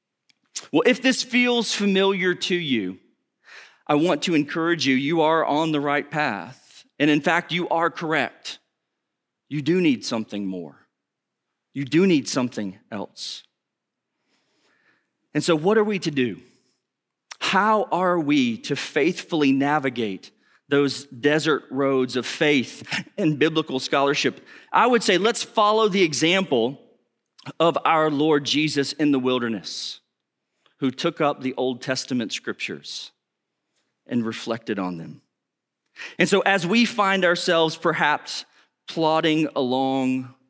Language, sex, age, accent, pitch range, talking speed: English, male, 40-59, American, 125-165 Hz, 130 wpm